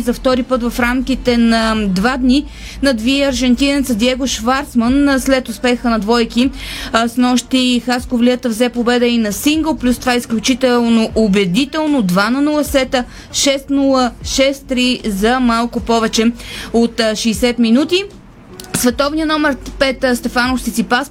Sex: female